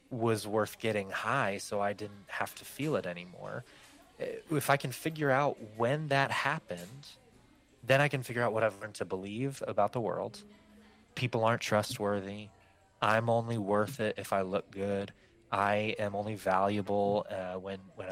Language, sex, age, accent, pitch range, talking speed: English, male, 20-39, American, 100-130 Hz, 170 wpm